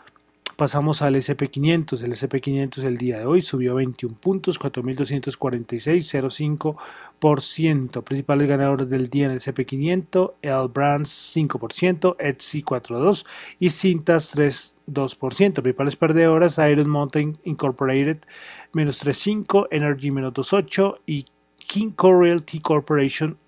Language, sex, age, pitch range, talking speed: Spanish, male, 30-49, 135-165 Hz, 110 wpm